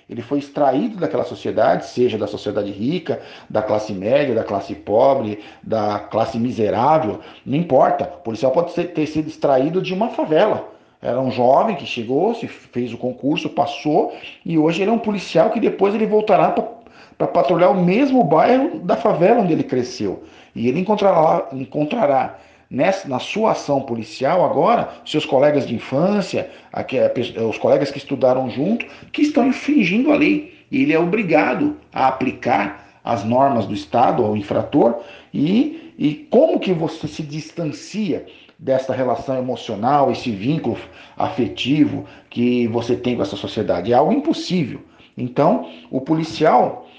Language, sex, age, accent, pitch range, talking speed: Portuguese, male, 50-69, Brazilian, 125-190 Hz, 150 wpm